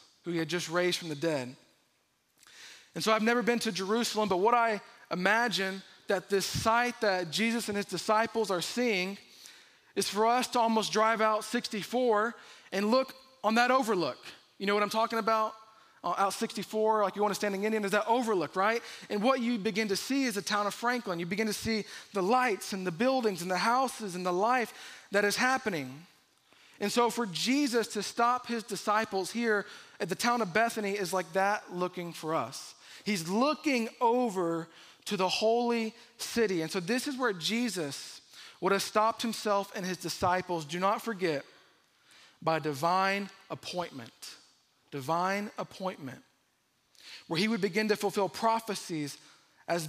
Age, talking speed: 20-39, 175 wpm